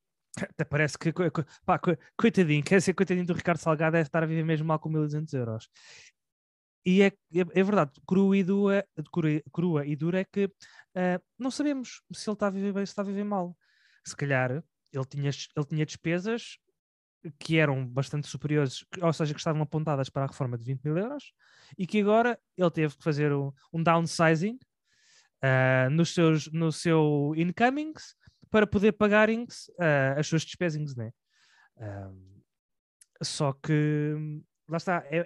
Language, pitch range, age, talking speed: Portuguese, 150-195 Hz, 20-39, 180 wpm